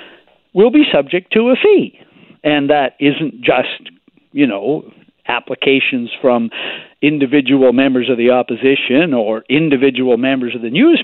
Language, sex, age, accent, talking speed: English, male, 60-79, American, 135 wpm